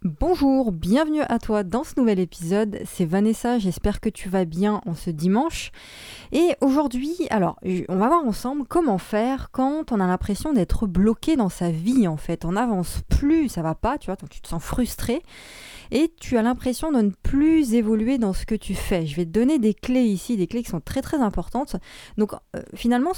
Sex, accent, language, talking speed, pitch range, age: female, French, French, 205 wpm, 190-250 Hz, 20-39